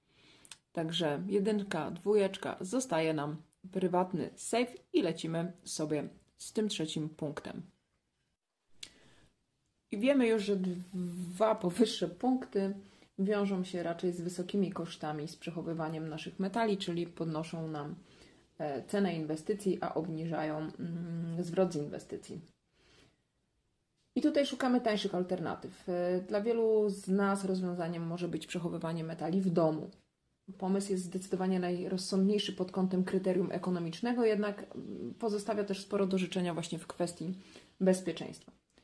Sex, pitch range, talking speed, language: female, 165-200 Hz, 115 wpm, Polish